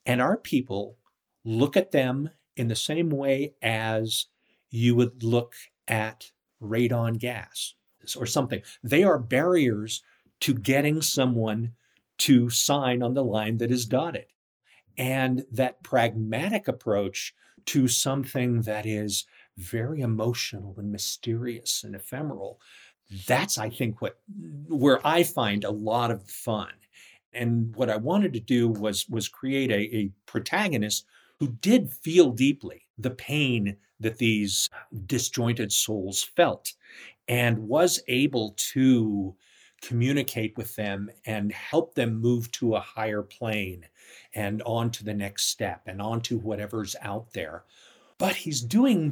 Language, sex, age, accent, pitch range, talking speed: English, male, 50-69, American, 110-135 Hz, 135 wpm